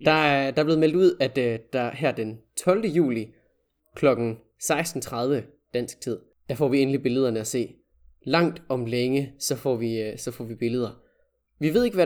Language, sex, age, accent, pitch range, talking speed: Danish, male, 20-39, native, 115-145 Hz, 200 wpm